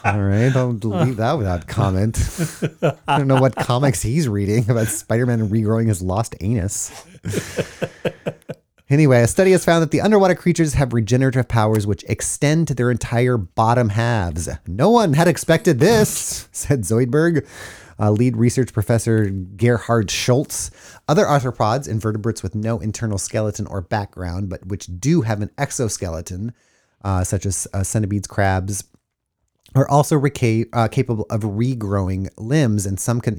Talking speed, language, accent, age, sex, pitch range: 150 wpm, English, American, 30-49, male, 105-135 Hz